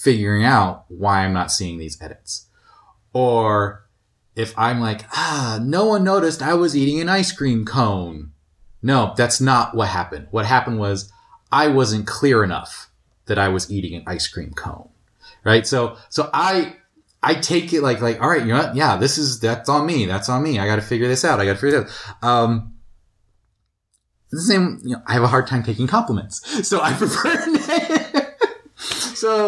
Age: 30-49